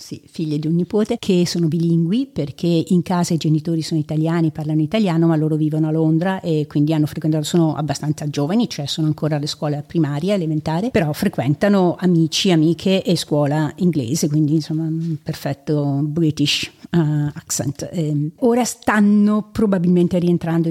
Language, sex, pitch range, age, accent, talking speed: Italian, female, 155-190 Hz, 50-69, native, 160 wpm